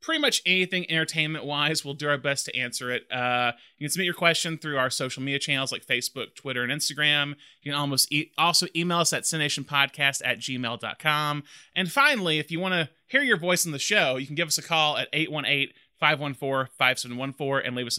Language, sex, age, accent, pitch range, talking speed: English, male, 30-49, American, 135-175 Hz, 205 wpm